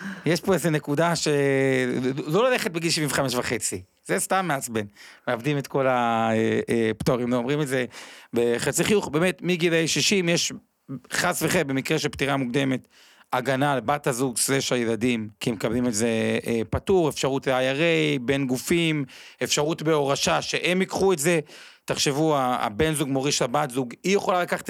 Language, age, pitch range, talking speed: Hebrew, 40-59, 125-165 Hz, 155 wpm